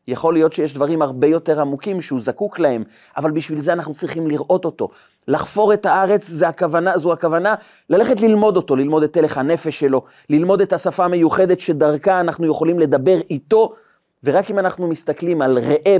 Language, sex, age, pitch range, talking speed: Hebrew, male, 30-49, 150-210 Hz, 175 wpm